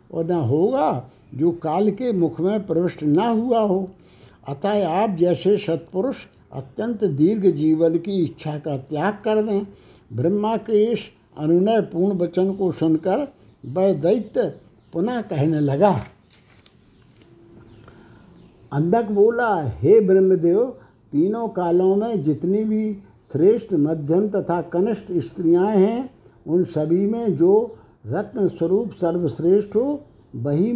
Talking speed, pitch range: 120 wpm, 165-210 Hz